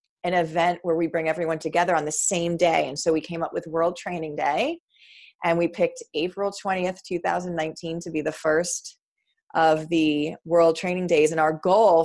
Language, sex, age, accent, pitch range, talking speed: English, female, 30-49, American, 160-215 Hz, 190 wpm